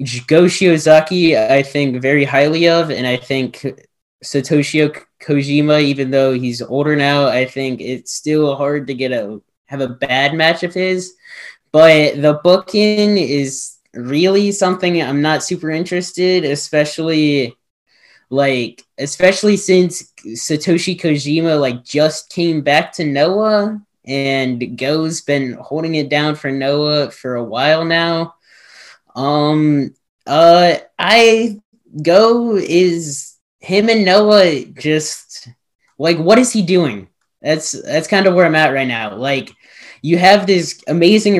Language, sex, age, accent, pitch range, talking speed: English, male, 10-29, American, 140-175 Hz, 135 wpm